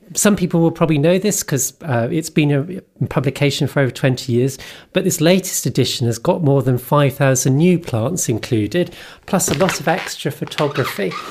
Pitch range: 125-165 Hz